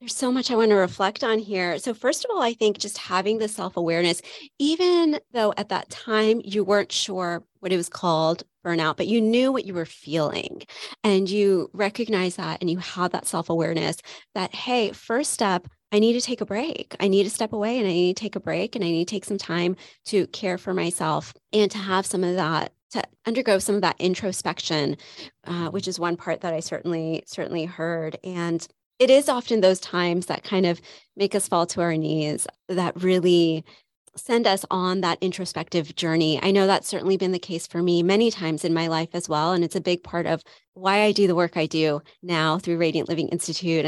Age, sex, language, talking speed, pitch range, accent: 30-49, female, English, 220 wpm, 170-210 Hz, American